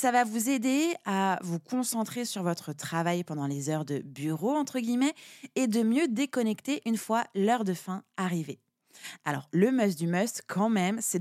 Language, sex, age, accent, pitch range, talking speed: French, female, 20-39, French, 185-255 Hz, 185 wpm